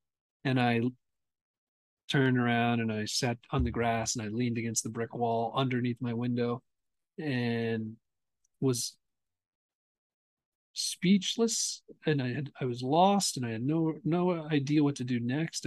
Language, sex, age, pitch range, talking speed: English, male, 40-59, 110-140 Hz, 150 wpm